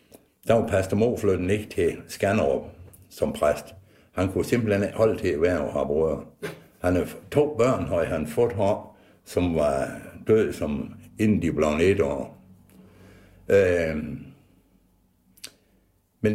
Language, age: Danish, 60-79